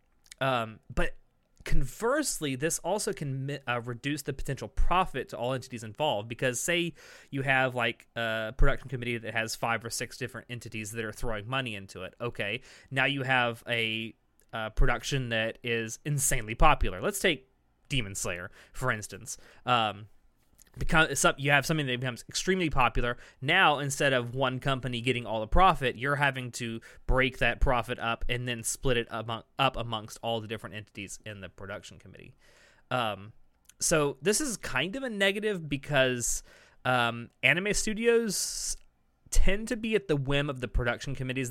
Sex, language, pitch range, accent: male, English, 115-145 Hz, American